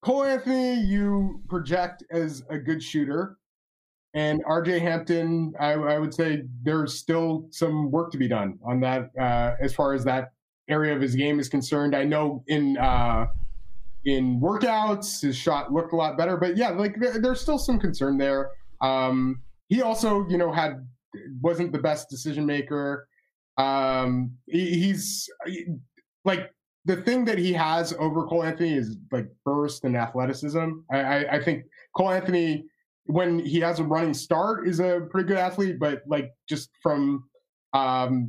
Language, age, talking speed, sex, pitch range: English, 20-39, 165 wpm, male, 135-175 Hz